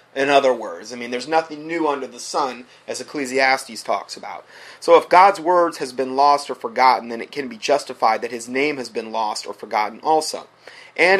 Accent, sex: American, male